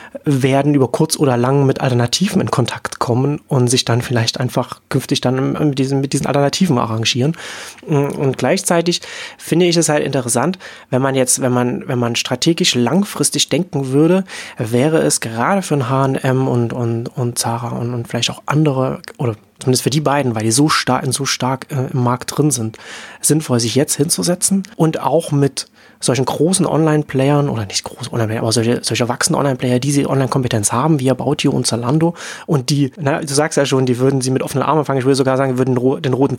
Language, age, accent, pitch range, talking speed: German, 30-49, German, 125-155 Hz, 205 wpm